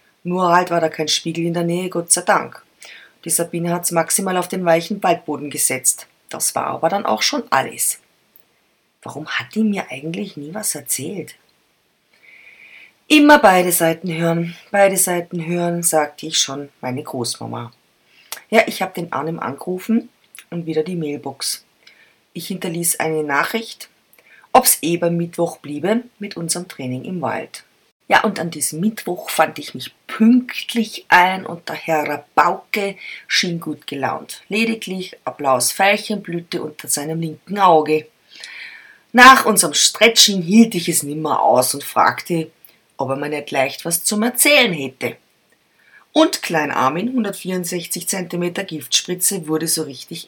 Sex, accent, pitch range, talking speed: female, German, 150-195 Hz, 150 wpm